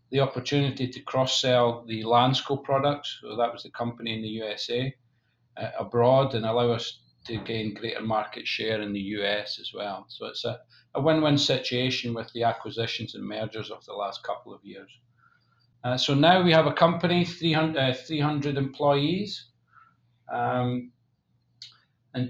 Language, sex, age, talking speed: English, male, 40-59, 160 wpm